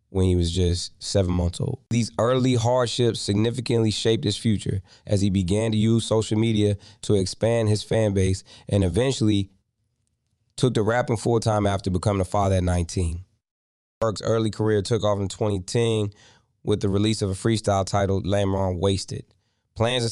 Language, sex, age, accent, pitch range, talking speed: English, male, 20-39, American, 95-115 Hz, 165 wpm